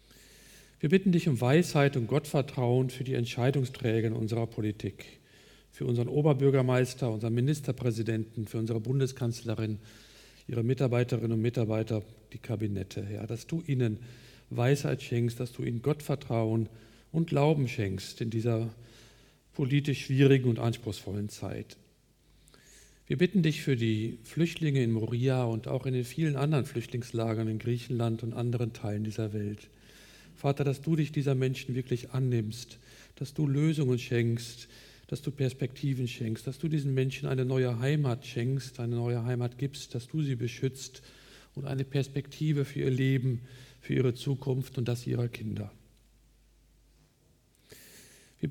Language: German